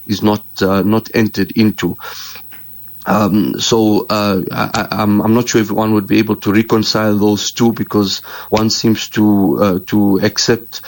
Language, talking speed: English, 165 wpm